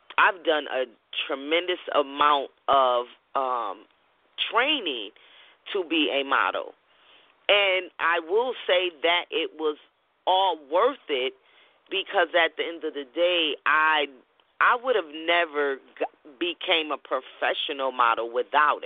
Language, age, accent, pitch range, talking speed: English, 30-49, American, 150-210 Hz, 125 wpm